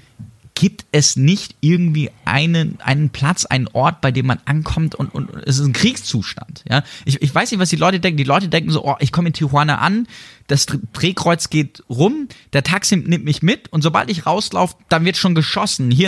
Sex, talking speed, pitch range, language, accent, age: male, 210 wpm, 115-155 Hz, German, German, 20-39